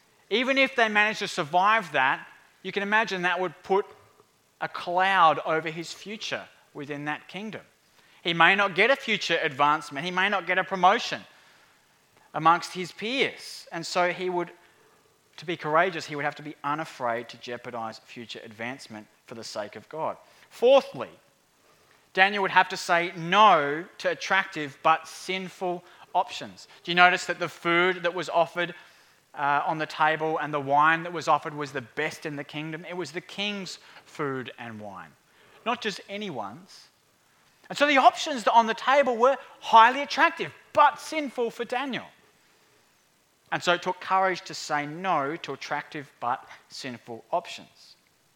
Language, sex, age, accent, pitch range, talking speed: English, male, 30-49, Australian, 150-200 Hz, 165 wpm